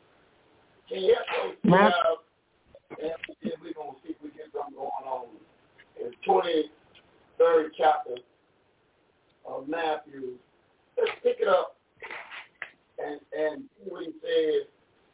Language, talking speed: English, 100 wpm